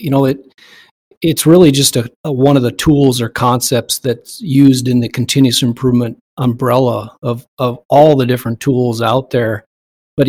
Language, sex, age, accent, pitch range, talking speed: English, male, 40-59, American, 115-135 Hz, 175 wpm